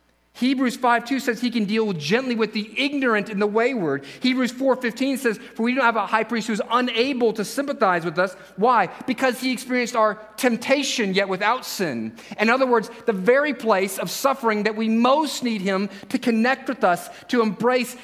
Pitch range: 175-235 Hz